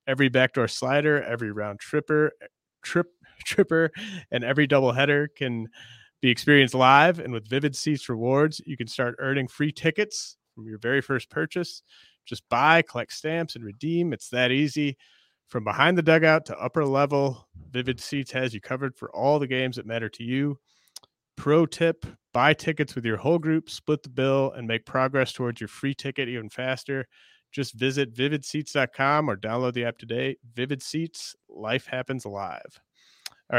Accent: American